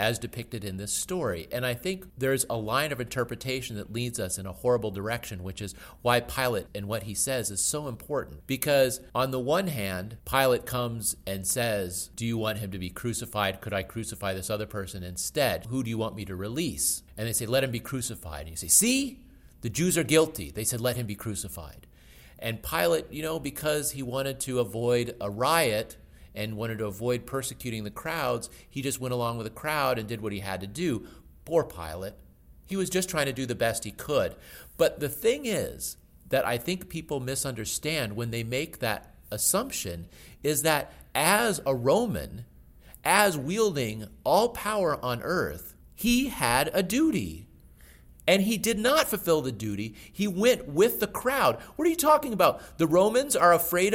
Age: 40-59